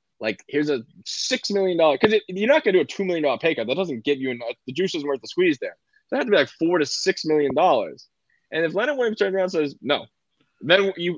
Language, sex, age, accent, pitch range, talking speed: English, male, 20-39, American, 120-160 Hz, 275 wpm